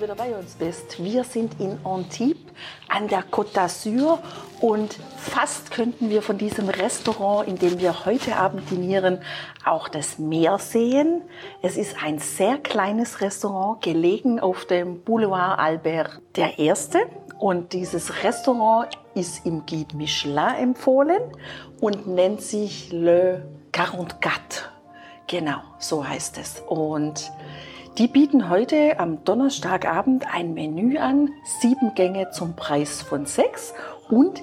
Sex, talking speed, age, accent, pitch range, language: female, 130 wpm, 50-69, German, 175-235 Hz, German